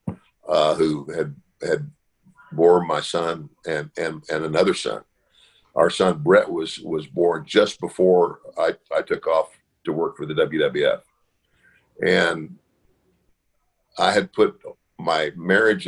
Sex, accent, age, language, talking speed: male, American, 50-69, English, 130 wpm